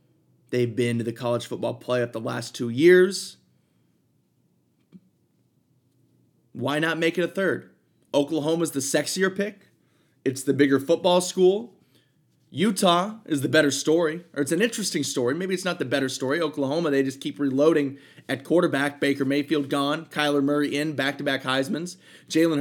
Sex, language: male, English